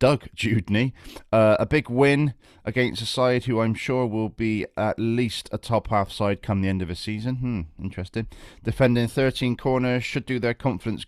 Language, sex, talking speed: English, male, 180 wpm